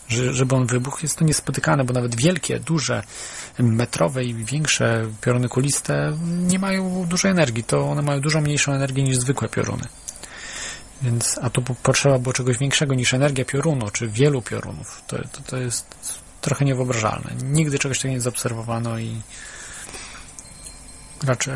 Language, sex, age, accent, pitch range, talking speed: Polish, male, 30-49, native, 120-140 Hz, 150 wpm